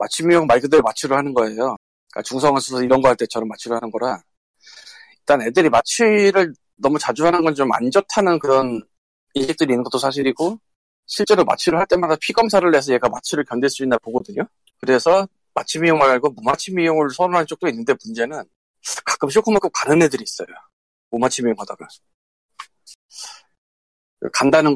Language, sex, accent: Korean, male, native